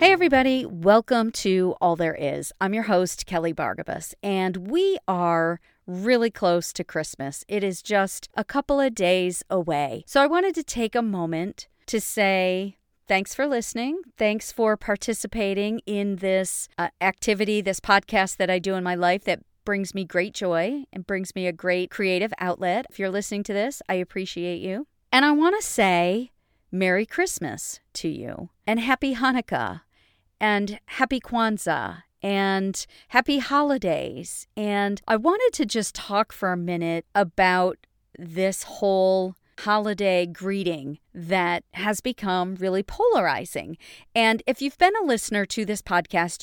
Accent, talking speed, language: American, 155 wpm, English